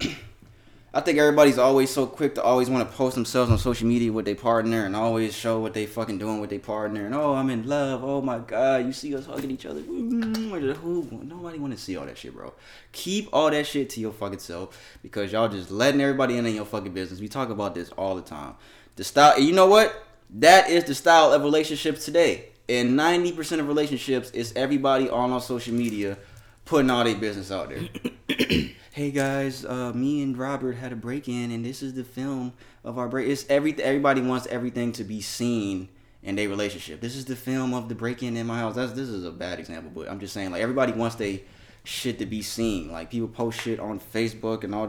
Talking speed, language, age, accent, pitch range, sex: 225 wpm, English, 20-39, American, 105-135 Hz, male